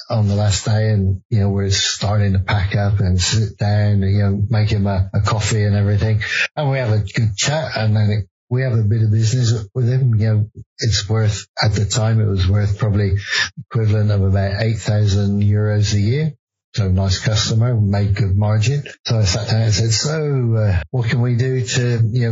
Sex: male